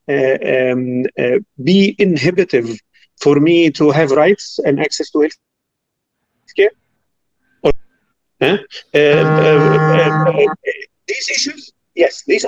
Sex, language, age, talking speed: male, English, 50-69, 115 wpm